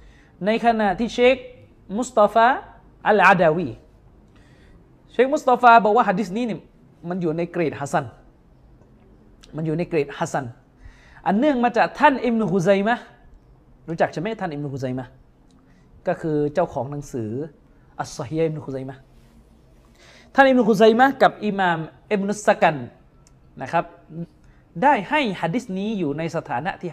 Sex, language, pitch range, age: male, Thai, 145-220 Hz, 20-39